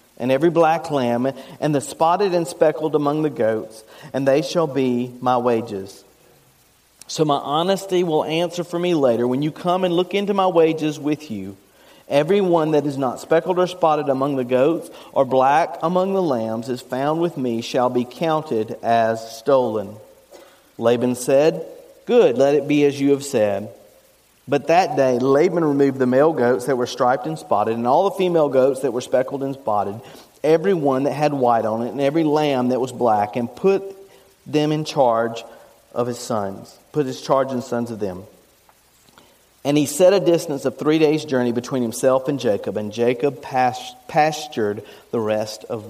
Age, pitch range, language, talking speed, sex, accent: 40-59, 120-160 Hz, English, 185 wpm, male, American